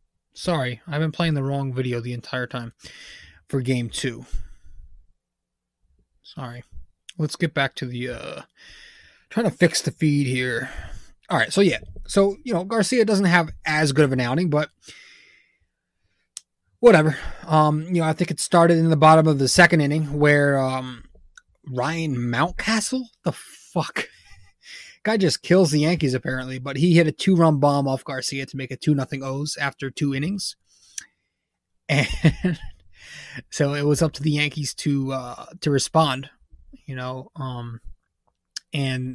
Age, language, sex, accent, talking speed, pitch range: 20-39, English, male, American, 160 wpm, 125-160 Hz